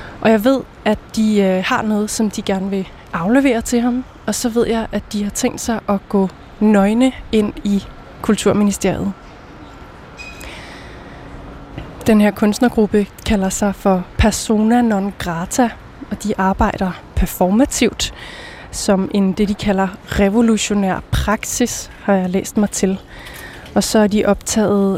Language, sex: Danish, female